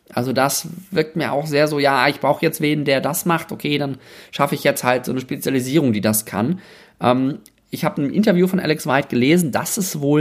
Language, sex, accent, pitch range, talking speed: German, male, German, 110-150 Hz, 230 wpm